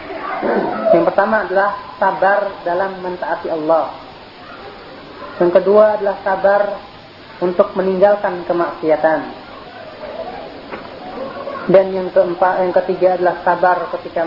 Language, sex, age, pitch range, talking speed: Malay, female, 30-49, 185-230 Hz, 95 wpm